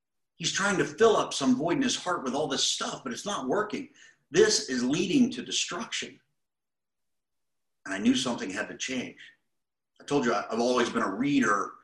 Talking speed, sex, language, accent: 195 wpm, male, English, American